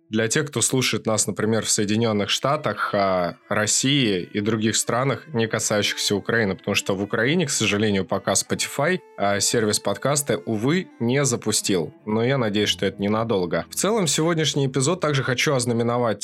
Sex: male